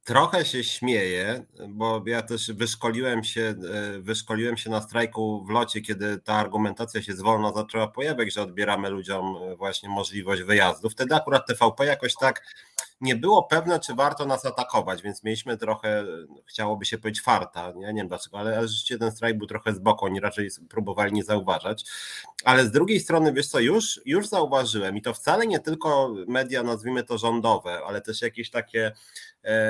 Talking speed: 175 wpm